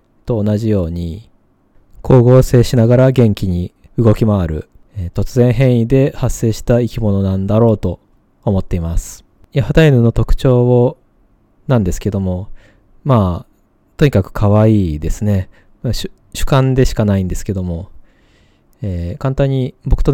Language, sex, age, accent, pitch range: Japanese, male, 20-39, native, 100-125 Hz